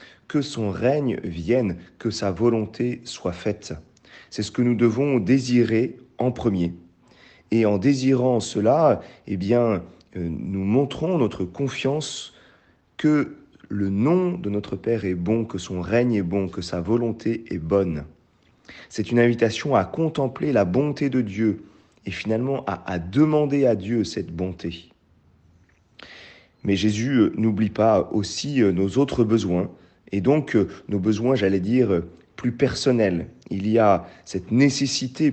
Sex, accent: male, French